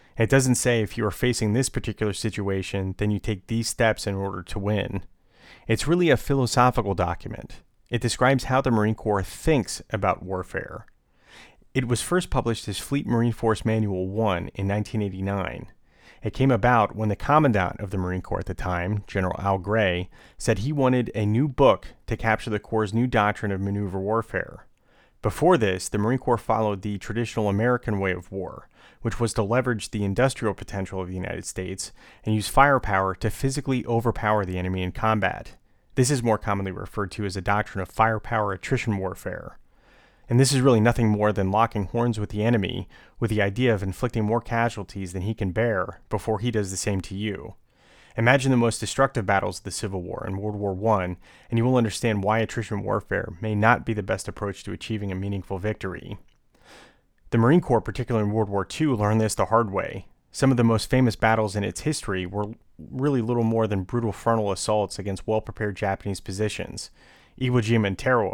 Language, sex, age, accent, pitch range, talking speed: English, male, 30-49, American, 100-115 Hz, 195 wpm